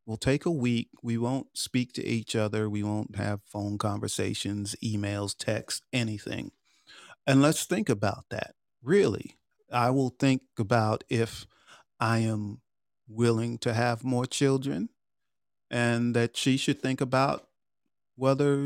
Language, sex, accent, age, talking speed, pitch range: English, male, American, 40-59, 140 wpm, 115-140 Hz